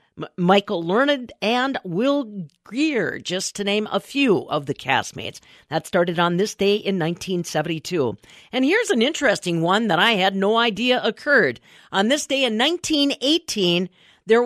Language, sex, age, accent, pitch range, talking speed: English, female, 50-69, American, 180-260 Hz, 155 wpm